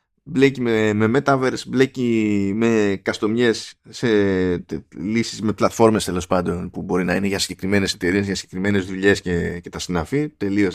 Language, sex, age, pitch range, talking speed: Greek, male, 20-39, 95-125 Hz, 160 wpm